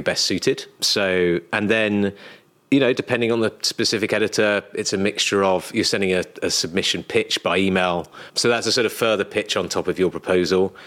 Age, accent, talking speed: 30-49, British, 200 wpm